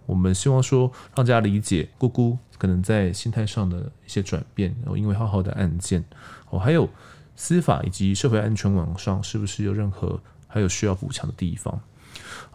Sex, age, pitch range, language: male, 20-39, 95-120 Hz, Chinese